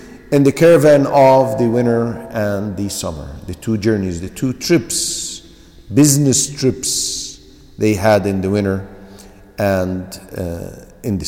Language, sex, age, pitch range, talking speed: English, male, 50-69, 95-145 Hz, 140 wpm